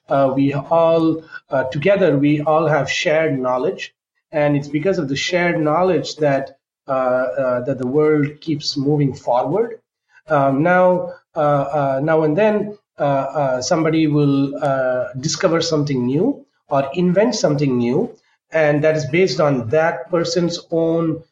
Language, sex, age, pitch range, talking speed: English, male, 30-49, 135-170 Hz, 150 wpm